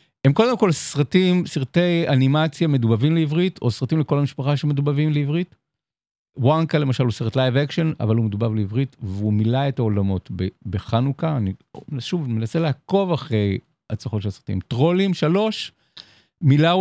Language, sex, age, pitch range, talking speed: Hebrew, male, 50-69, 115-165 Hz, 145 wpm